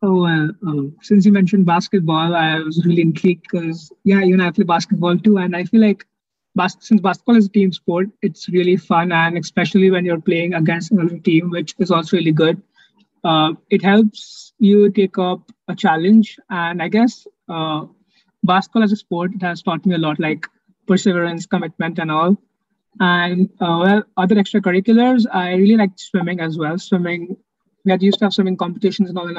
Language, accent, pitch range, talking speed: English, Indian, 175-205 Hz, 190 wpm